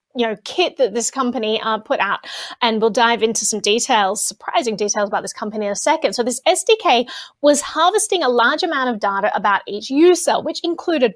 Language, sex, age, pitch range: English, female, 20-39, 230-335 Hz